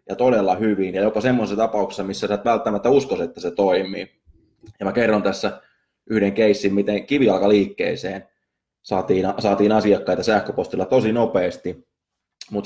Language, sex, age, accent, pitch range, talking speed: Finnish, male, 20-39, native, 95-110 Hz, 145 wpm